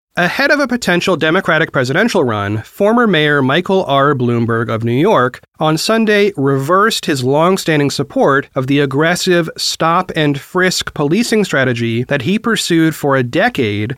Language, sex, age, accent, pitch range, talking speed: English, male, 30-49, American, 125-175 Hz, 140 wpm